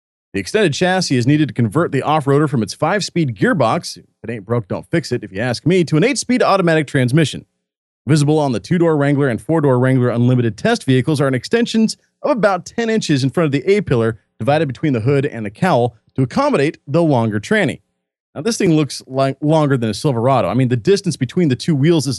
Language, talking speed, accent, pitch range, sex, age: English, 220 wpm, American, 120-175 Hz, male, 40-59